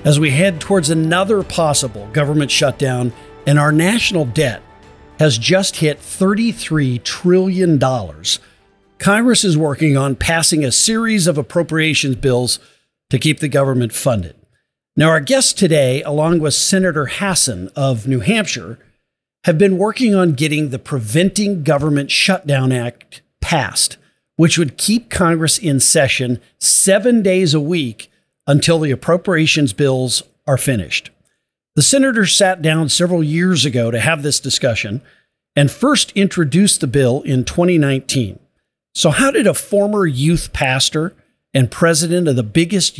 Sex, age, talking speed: male, 50-69, 140 wpm